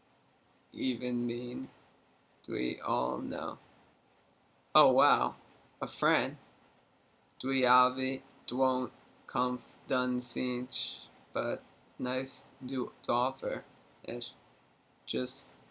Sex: male